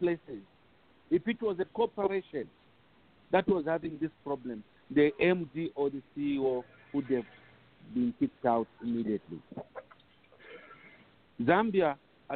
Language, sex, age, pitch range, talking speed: English, male, 50-69, 165-245 Hz, 110 wpm